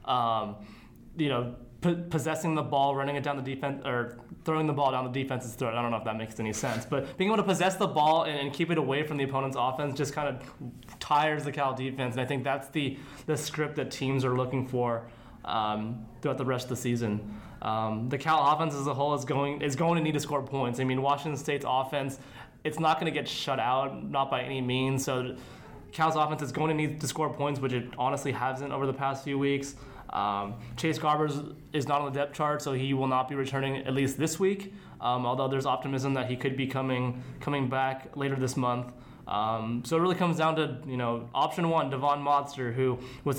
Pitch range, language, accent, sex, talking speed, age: 130-150 Hz, English, American, male, 230 wpm, 20-39